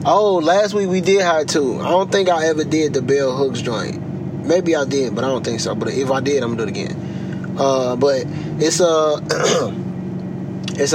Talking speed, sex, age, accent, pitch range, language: 220 wpm, male, 20-39, American, 145-175 Hz, English